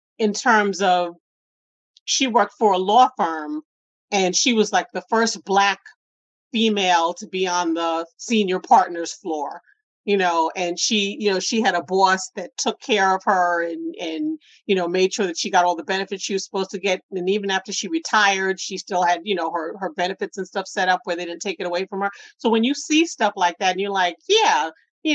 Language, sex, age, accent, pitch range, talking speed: English, female, 40-59, American, 175-220 Hz, 220 wpm